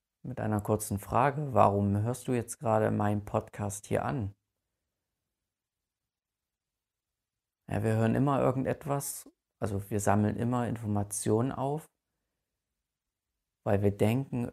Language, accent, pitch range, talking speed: German, German, 100-115 Hz, 105 wpm